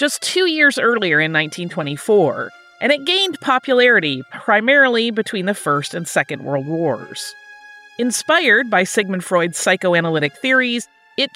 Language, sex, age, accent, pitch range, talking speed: English, female, 30-49, American, 170-250 Hz, 130 wpm